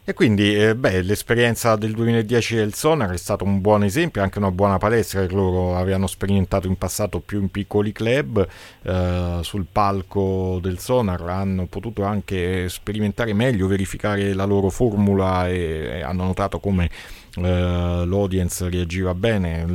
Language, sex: Italian, male